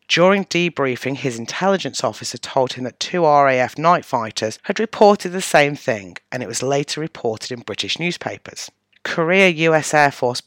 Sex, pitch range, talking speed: female, 120-160 Hz, 165 wpm